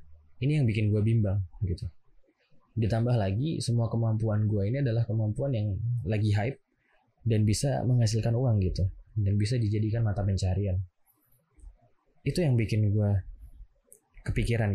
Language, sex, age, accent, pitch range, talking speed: Indonesian, male, 20-39, native, 95-115 Hz, 130 wpm